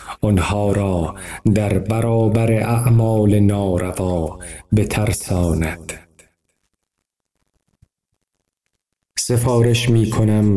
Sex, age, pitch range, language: male, 50-69, 95-110 Hz, Persian